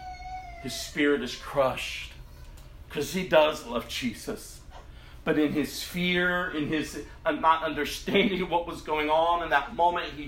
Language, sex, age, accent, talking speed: English, male, 40-59, American, 145 wpm